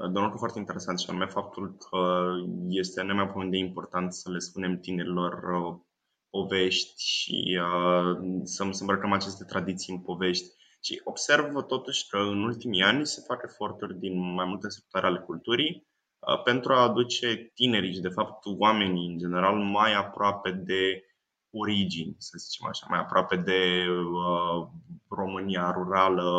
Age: 20-39